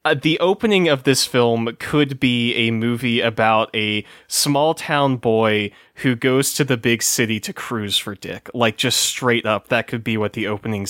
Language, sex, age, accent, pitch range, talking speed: English, male, 20-39, American, 110-130 Hz, 195 wpm